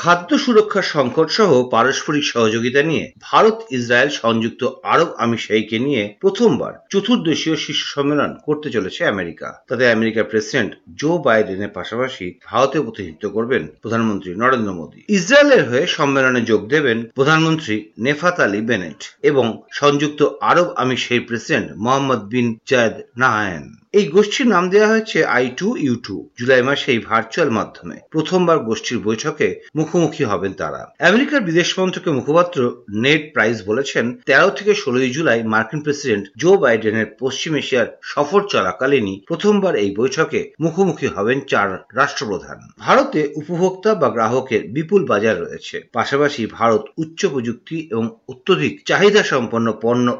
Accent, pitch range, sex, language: native, 115-175 Hz, male, Bengali